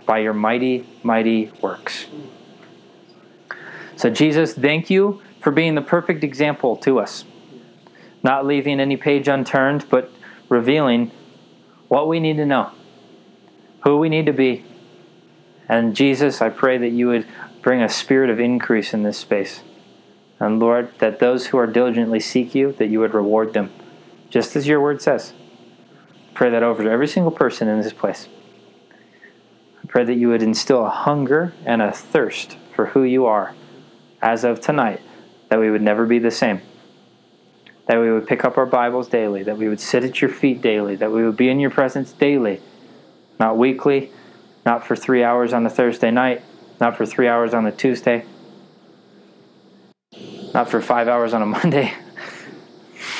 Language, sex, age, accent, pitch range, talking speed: English, male, 20-39, American, 115-135 Hz, 170 wpm